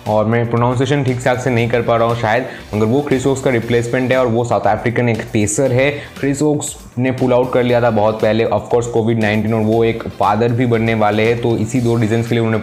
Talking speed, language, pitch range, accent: 255 wpm, Hindi, 110-130 Hz, native